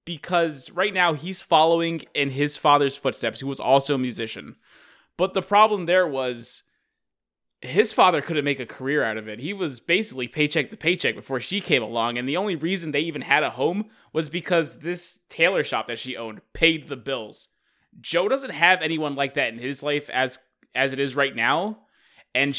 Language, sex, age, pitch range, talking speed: English, male, 20-39, 130-160 Hz, 195 wpm